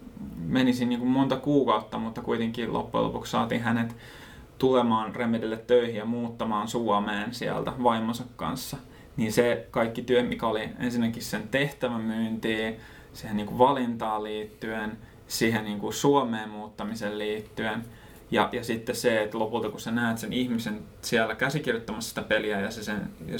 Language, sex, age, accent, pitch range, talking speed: Finnish, male, 20-39, native, 110-120 Hz, 145 wpm